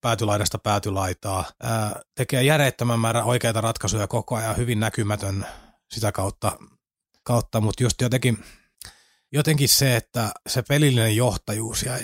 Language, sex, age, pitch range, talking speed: Finnish, male, 30-49, 105-120 Hz, 125 wpm